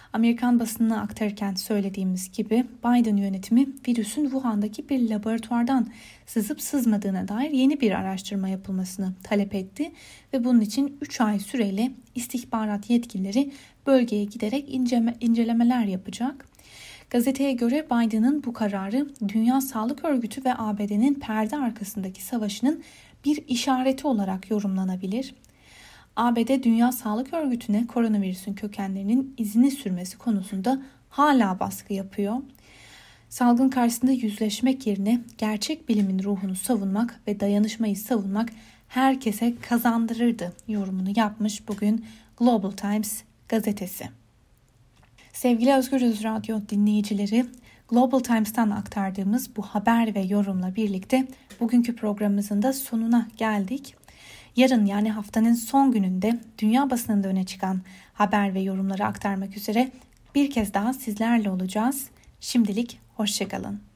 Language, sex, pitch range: Turkish, female, 205-250 Hz